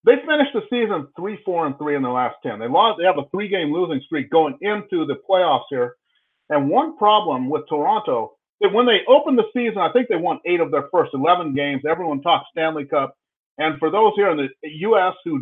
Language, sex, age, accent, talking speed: English, male, 50-69, American, 225 wpm